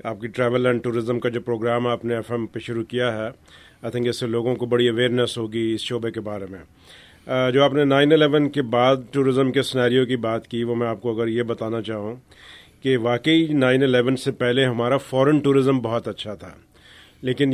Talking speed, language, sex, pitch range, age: 220 wpm, Urdu, male, 120-135 Hz, 40-59